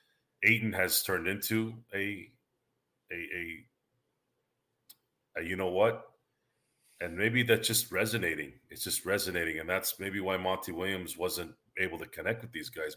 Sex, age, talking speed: male, 40-59, 150 wpm